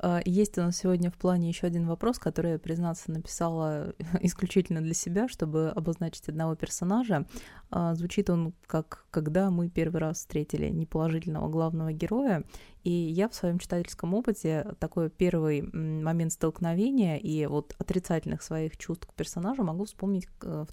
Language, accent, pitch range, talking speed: Russian, native, 160-190 Hz, 140 wpm